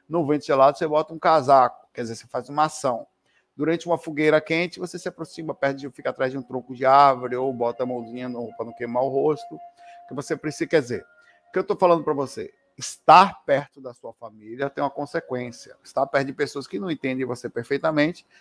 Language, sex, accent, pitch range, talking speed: Portuguese, male, Brazilian, 130-175 Hz, 215 wpm